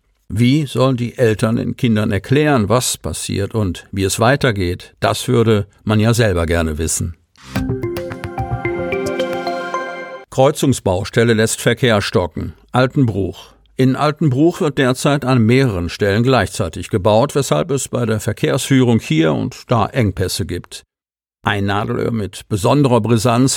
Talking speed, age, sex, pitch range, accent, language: 125 wpm, 50-69, male, 105-130 Hz, German, German